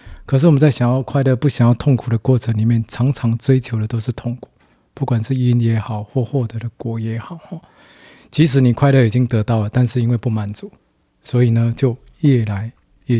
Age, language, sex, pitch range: 20-39, Chinese, male, 110-125 Hz